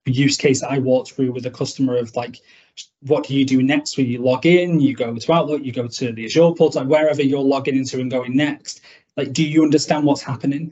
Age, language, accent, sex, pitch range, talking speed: 20-39, English, British, male, 130-150 Hz, 235 wpm